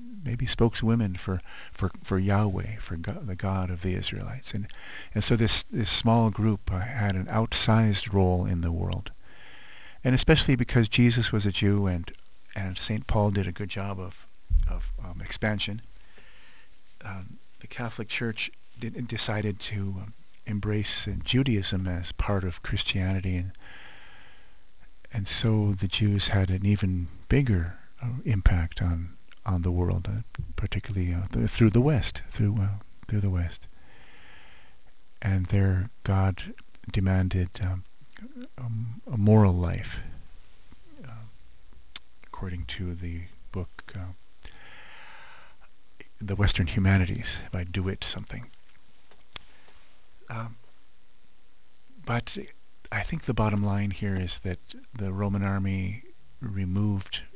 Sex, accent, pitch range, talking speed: male, American, 90-110 Hz, 130 wpm